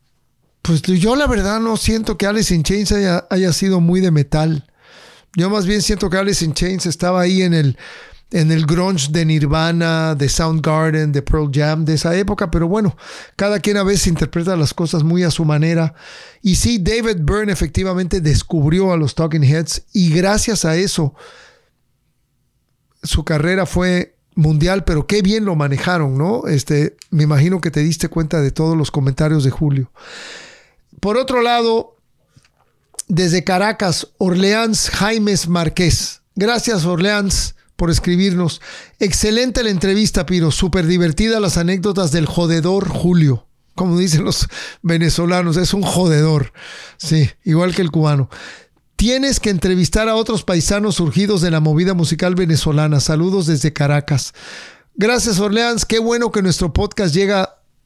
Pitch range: 155-195 Hz